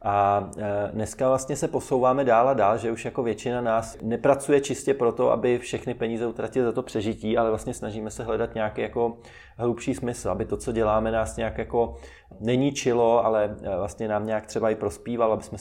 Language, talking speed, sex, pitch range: Czech, 190 wpm, male, 110-125 Hz